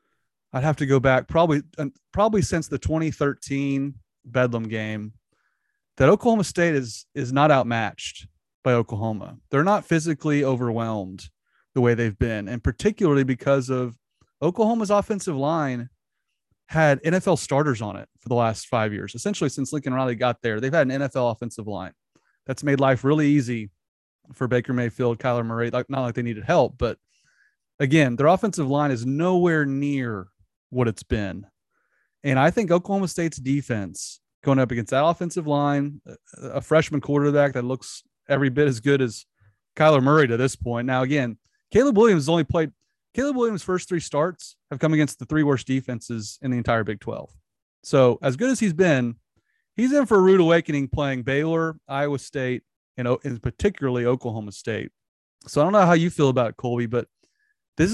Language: English